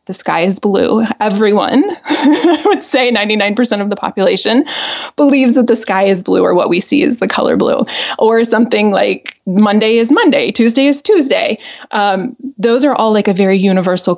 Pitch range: 195-255 Hz